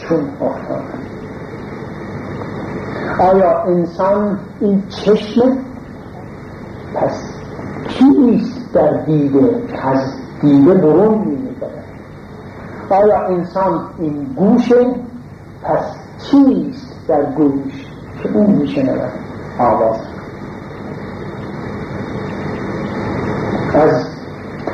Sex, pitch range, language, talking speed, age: male, 140-195 Hz, Persian, 70 wpm, 50-69